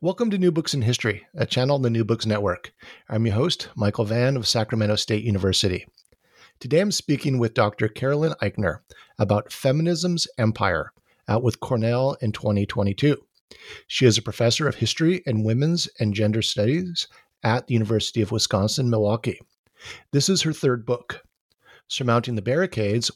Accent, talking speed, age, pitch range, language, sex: American, 160 wpm, 50-69, 105-135 Hz, English, male